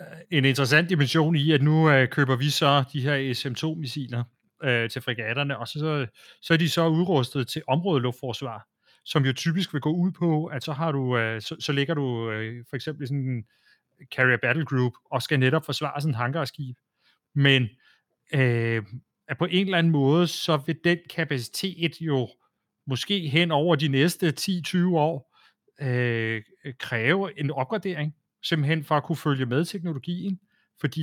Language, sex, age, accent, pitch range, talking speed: Danish, male, 30-49, native, 125-160 Hz, 175 wpm